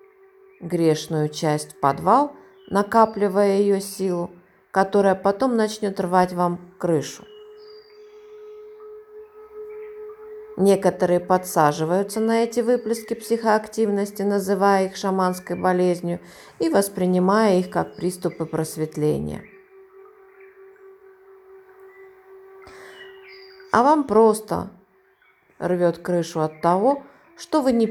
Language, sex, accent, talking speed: Russian, female, native, 85 wpm